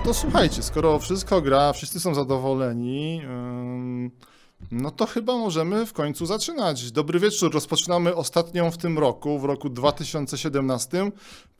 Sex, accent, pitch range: male, native, 140-170 Hz